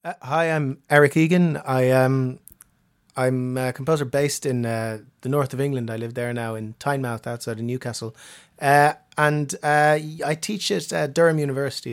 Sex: male